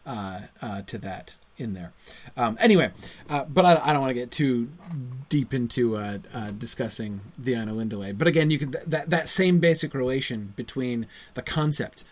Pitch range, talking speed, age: 105-150 Hz, 185 wpm, 30-49